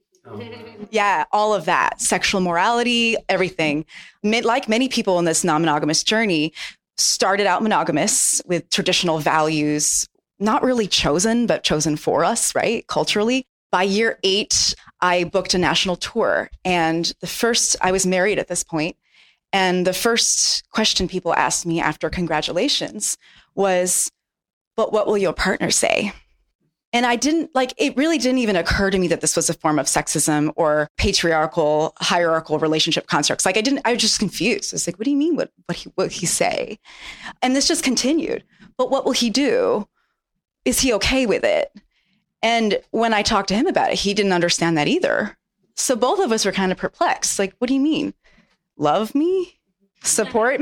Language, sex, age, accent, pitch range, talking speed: English, female, 20-39, American, 170-240 Hz, 175 wpm